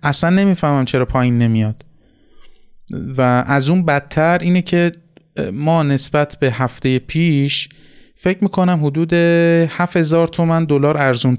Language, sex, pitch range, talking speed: Persian, male, 125-155 Hz, 120 wpm